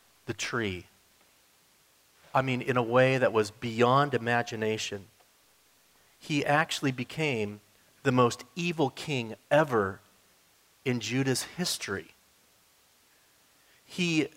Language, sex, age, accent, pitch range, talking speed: German, male, 40-59, American, 115-145 Hz, 90 wpm